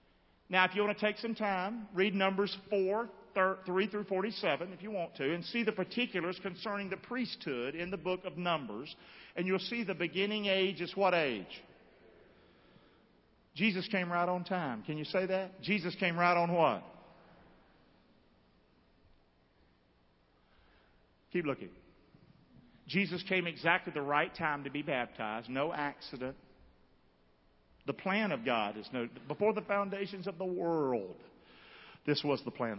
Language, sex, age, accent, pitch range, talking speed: English, male, 50-69, American, 140-200 Hz, 150 wpm